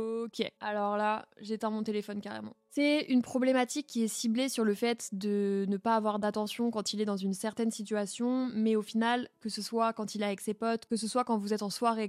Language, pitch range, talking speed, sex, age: French, 205-230 Hz, 240 wpm, female, 20-39